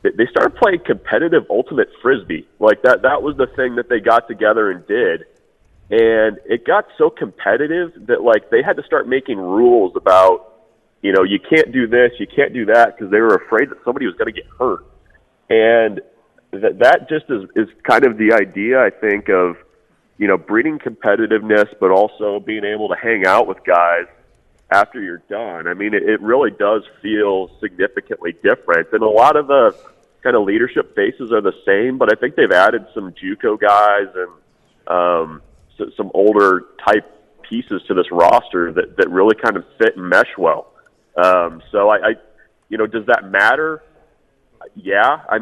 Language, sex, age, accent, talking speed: English, male, 30-49, American, 185 wpm